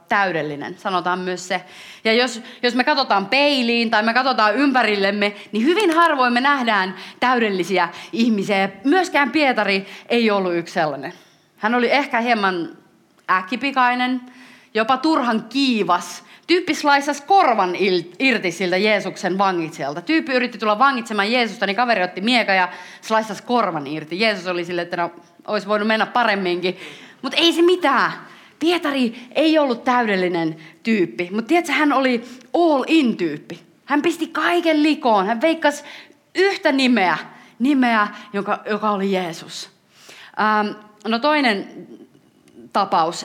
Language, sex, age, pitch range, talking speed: Finnish, female, 30-49, 185-260 Hz, 130 wpm